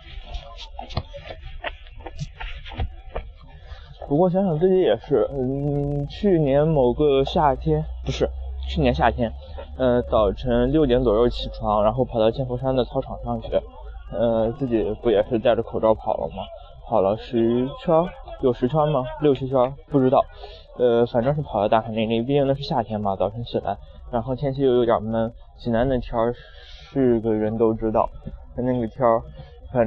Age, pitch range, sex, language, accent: 20-39, 110-135 Hz, male, Chinese, native